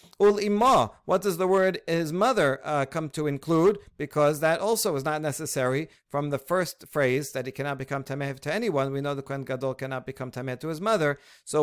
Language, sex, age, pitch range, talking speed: English, male, 50-69, 140-175 Hz, 195 wpm